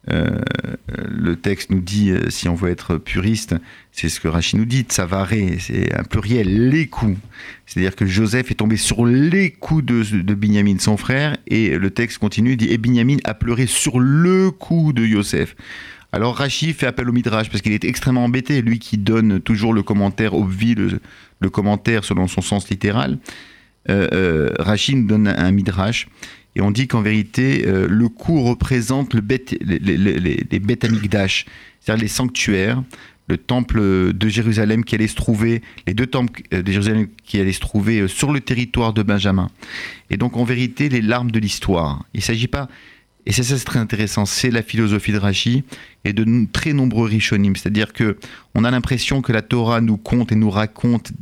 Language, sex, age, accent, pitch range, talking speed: French, male, 50-69, French, 100-120 Hz, 190 wpm